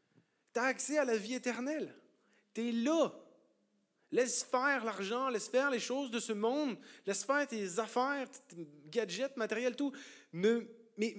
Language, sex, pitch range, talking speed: French, male, 170-245 Hz, 155 wpm